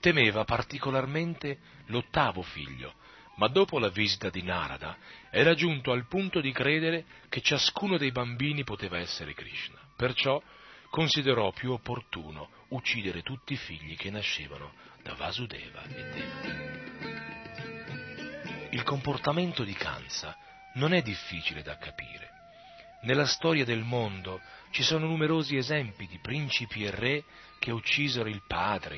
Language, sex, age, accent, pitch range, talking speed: Italian, male, 40-59, native, 100-145 Hz, 130 wpm